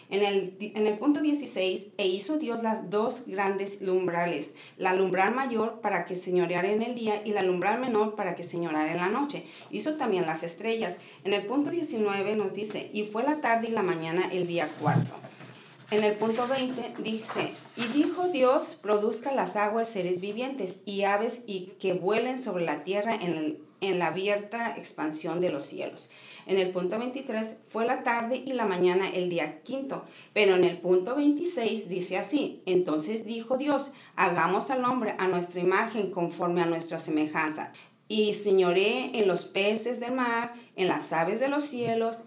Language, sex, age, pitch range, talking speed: Spanish, female, 30-49, 180-230 Hz, 180 wpm